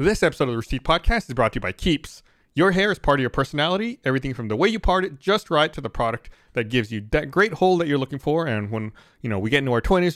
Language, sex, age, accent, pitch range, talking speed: English, male, 30-49, American, 120-170 Hz, 295 wpm